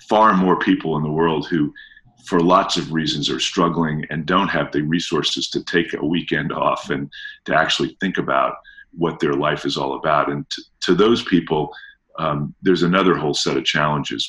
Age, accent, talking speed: 50-69, American, 195 wpm